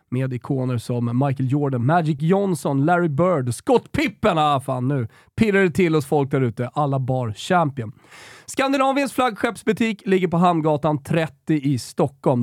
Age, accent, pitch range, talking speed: 30-49, native, 135-205 Hz, 155 wpm